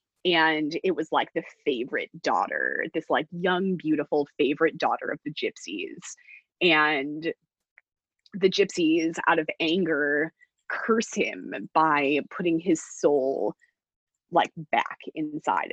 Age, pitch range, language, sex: 20-39, 155-215 Hz, English, female